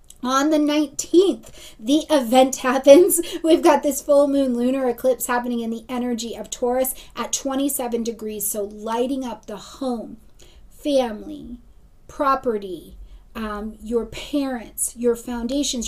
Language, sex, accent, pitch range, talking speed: English, female, American, 240-300 Hz, 130 wpm